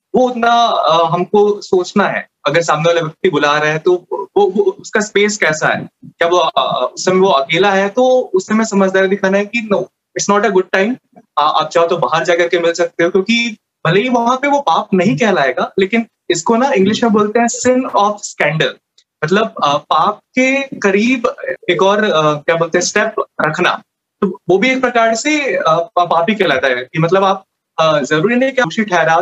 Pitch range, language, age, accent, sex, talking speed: 160-220 Hz, Hindi, 20-39, native, male, 200 wpm